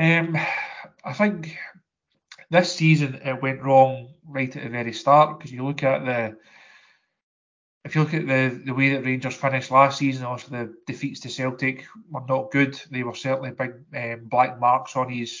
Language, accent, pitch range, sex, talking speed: English, British, 125-140 Hz, male, 185 wpm